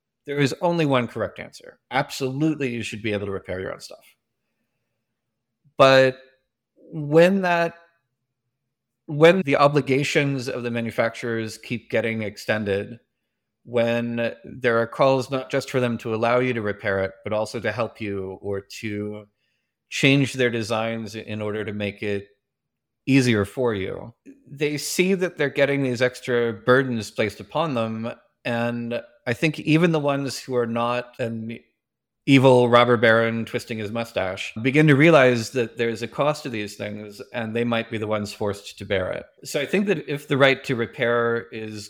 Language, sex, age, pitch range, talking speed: English, male, 30-49, 110-130 Hz, 170 wpm